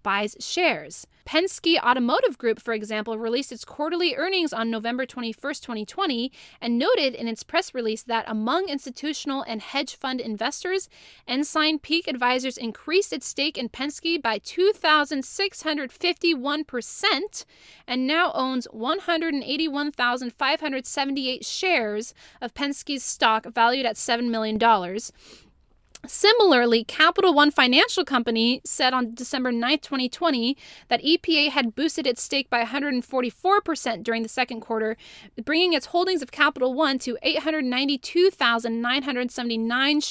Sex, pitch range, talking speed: female, 235-315 Hz, 125 wpm